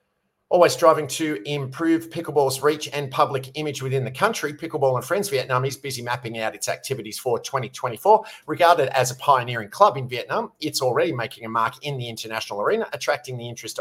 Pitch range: 125-150 Hz